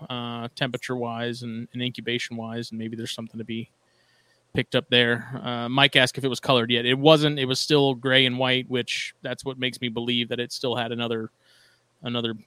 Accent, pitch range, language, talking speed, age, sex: American, 115-130 Hz, English, 200 wpm, 20-39, male